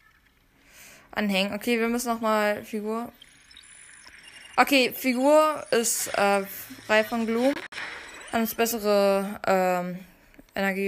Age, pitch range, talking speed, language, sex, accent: 20-39, 205-280 Hz, 105 wpm, German, female, German